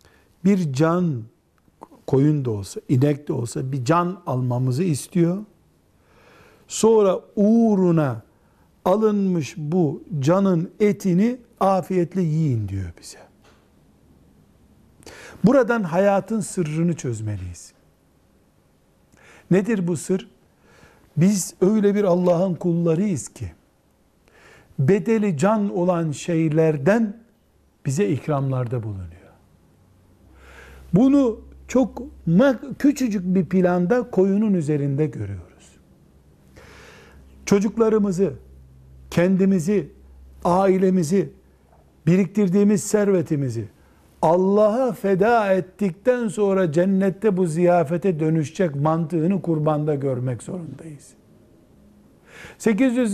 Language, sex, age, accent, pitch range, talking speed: Turkish, male, 60-79, native, 130-200 Hz, 75 wpm